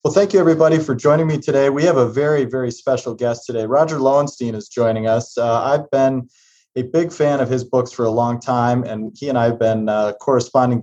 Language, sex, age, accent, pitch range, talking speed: English, male, 30-49, American, 110-130 Hz, 235 wpm